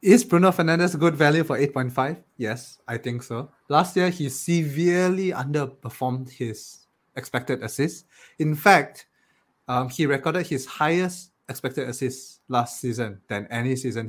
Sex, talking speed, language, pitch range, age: male, 145 wpm, English, 120-160 Hz, 20-39